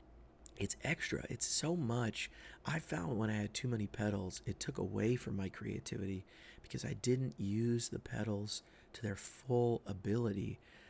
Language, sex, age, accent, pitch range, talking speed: English, male, 30-49, American, 100-125 Hz, 160 wpm